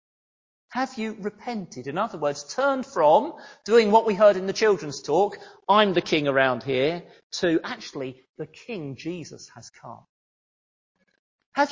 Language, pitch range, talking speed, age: English, 155-260 Hz, 150 wpm, 40-59